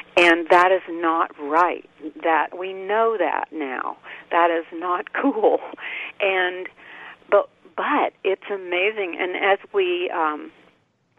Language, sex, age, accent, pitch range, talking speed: English, female, 50-69, American, 160-220 Hz, 125 wpm